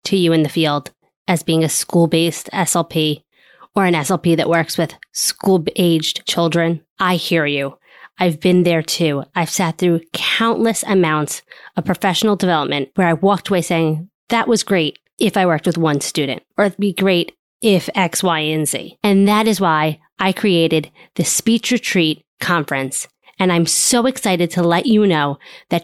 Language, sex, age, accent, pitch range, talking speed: English, female, 20-39, American, 165-200 Hz, 175 wpm